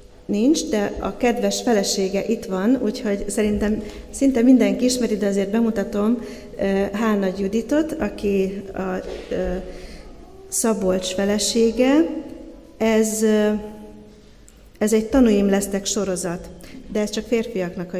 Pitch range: 200-240 Hz